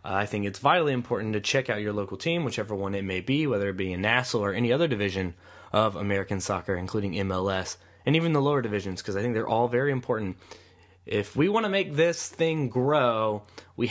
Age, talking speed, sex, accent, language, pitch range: 20-39, 220 wpm, male, American, English, 100-130 Hz